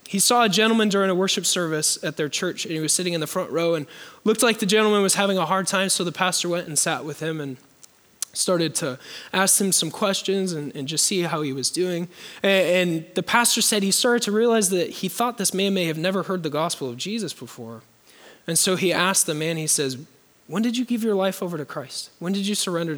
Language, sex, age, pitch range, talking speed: English, male, 20-39, 170-225 Hz, 250 wpm